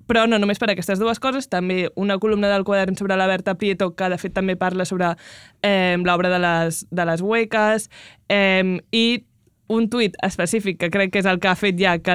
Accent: Spanish